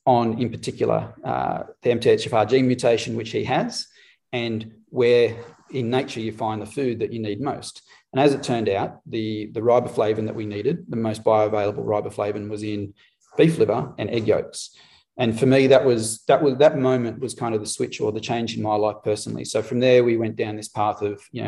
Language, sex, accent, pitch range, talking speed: English, male, Australian, 105-120 Hz, 210 wpm